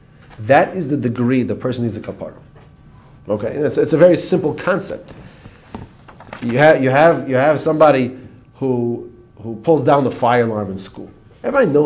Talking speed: 180 wpm